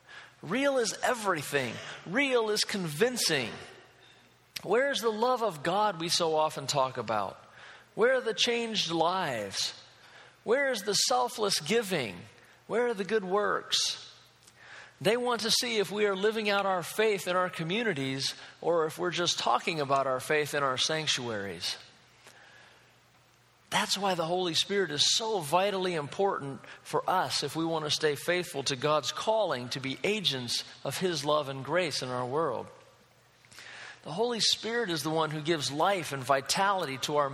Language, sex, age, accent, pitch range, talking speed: English, male, 40-59, American, 145-210 Hz, 160 wpm